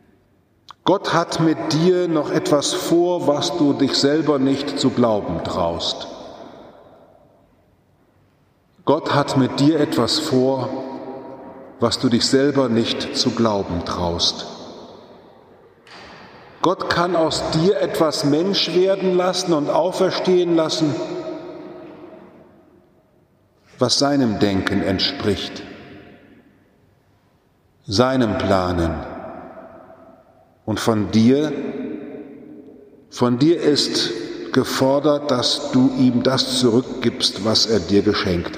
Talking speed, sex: 95 wpm, male